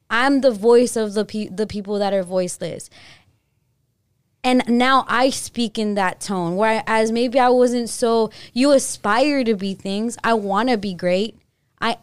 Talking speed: 170 wpm